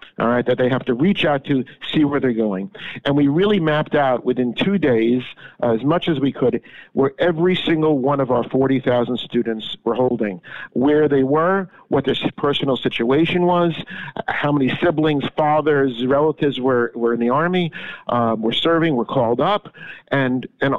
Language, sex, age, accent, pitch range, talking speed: English, male, 50-69, American, 125-160 Hz, 180 wpm